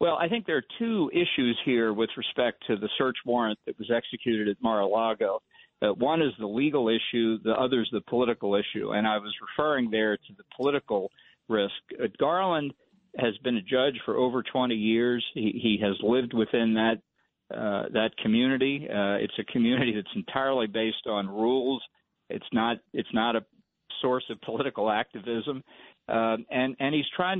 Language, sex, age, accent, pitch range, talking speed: English, male, 50-69, American, 110-130 Hz, 180 wpm